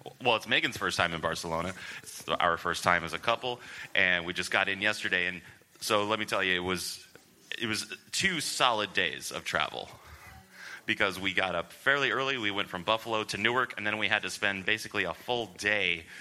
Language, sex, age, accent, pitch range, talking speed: English, male, 30-49, American, 90-105 Hz, 210 wpm